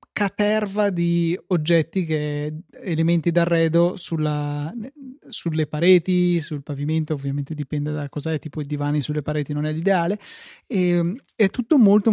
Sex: male